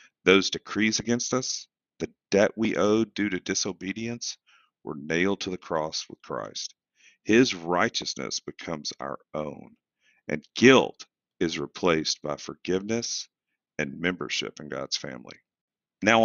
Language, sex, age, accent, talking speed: English, male, 50-69, American, 130 wpm